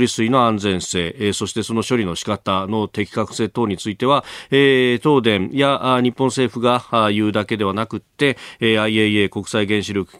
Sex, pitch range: male, 100-130 Hz